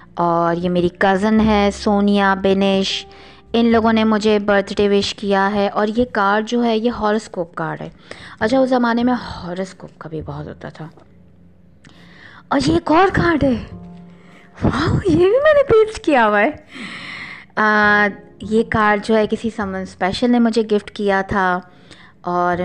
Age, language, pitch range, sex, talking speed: 20-39, Urdu, 185-270 Hz, female, 160 wpm